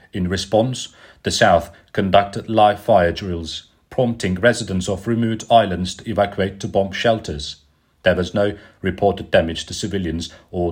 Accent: British